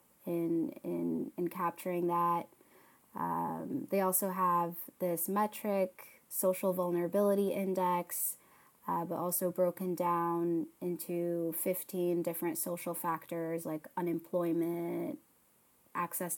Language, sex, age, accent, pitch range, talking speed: English, female, 20-39, American, 170-185 Hz, 100 wpm